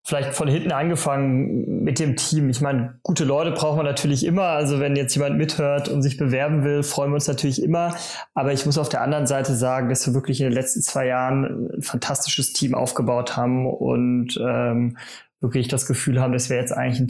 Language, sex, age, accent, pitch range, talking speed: German, male, 20-39, German, 125-150 Hz, 215 wpm